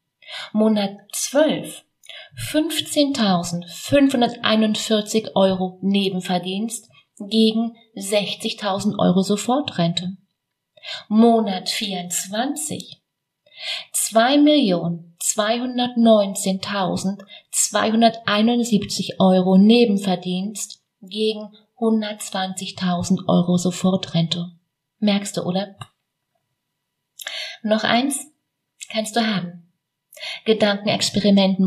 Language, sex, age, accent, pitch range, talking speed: German, female, 30-49, German, 180-225 Hz, 50 wpm